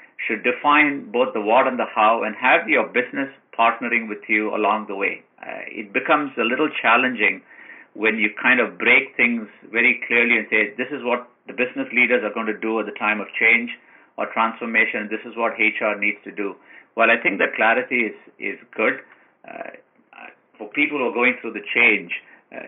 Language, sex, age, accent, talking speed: English, male, 50-69, Indian, 200 wpm